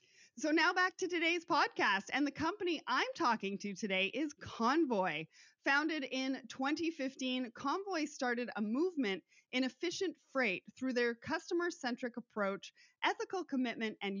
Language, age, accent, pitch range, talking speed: English, 30-49, American, 205-285 Hz, 135 wpm